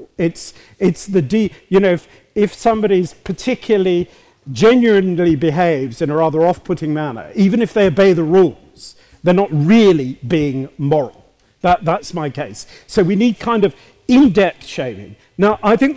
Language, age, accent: English, 50-69, British